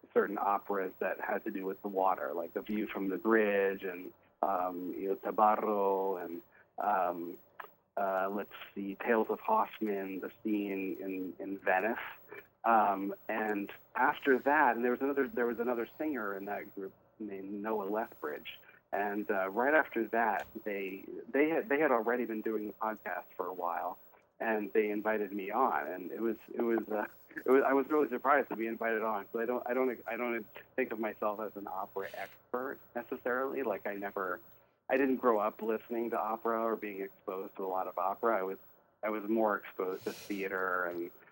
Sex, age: male, 40-59